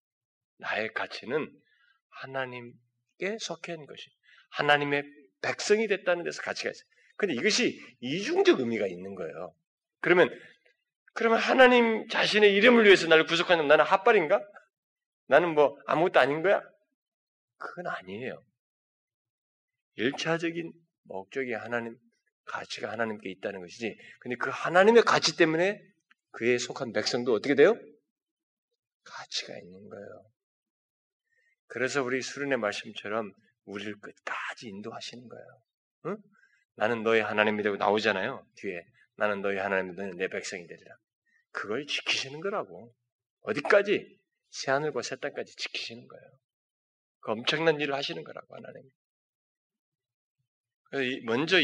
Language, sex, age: Korean, male, 30-49